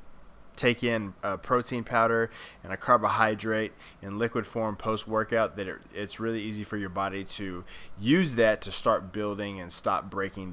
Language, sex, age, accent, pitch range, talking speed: English, male, 20-39, American, 100-115 Hz, 160 wpm